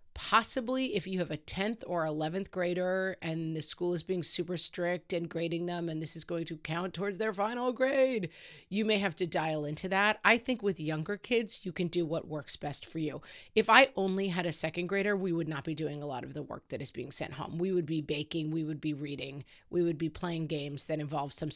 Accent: American